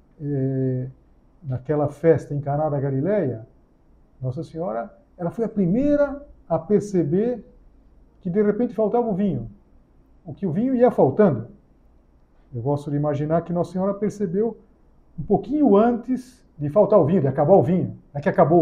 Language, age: Portuguese, 50-69